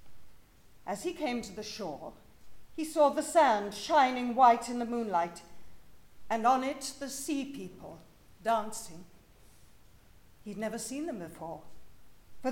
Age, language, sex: 50-69, English, female